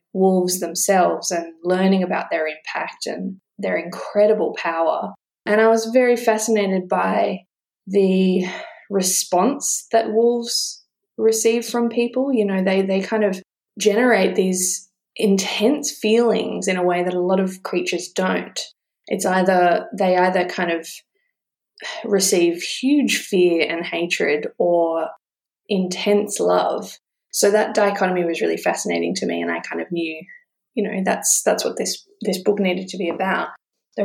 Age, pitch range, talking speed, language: 20-39, 180-225 Hz, 145 wpm, English